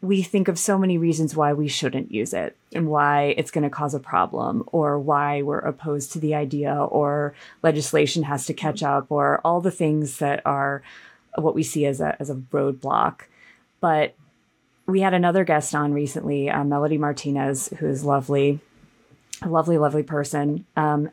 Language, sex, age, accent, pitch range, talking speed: English, female, 30-49, American, 145-180 Hz, 180 wpm